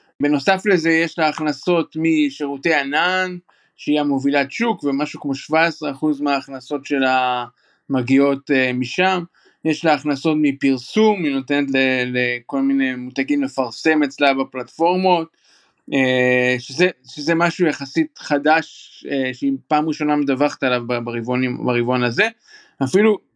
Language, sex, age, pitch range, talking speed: Hebrew, male, 20-39, 140-170 Hz, 110 wpm